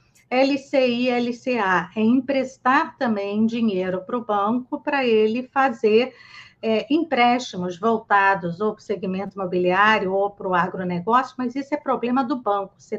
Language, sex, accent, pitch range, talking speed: Portuguese, female, Brazilian, 205-265 Hz, 140 wpm